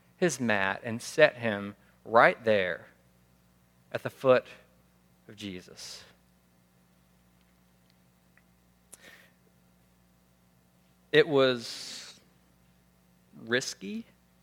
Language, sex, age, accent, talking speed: English, male, 40-59, American, 60 wpm